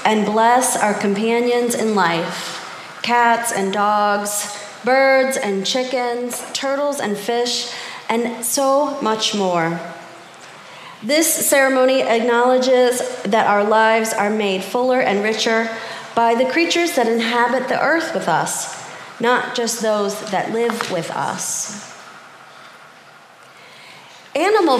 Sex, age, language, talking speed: female, 30-49, English, 115 wpm